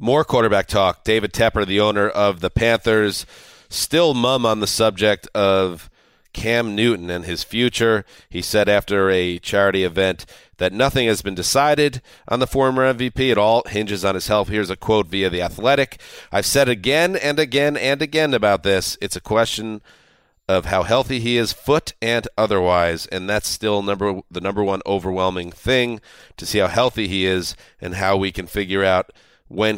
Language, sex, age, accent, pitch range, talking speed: English, male, 40-59, American, 95-125 Hz, 180 wpm